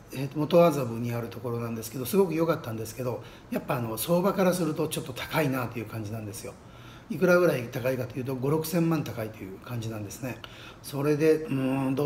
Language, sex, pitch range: Japanese, male, 120-155 Hz